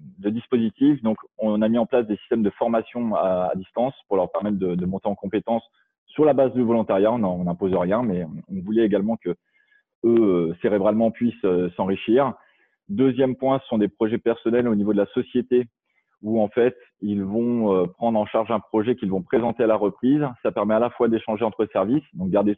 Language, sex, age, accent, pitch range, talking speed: French, male, 20-39, French, 100-125 Hz, 205 wpm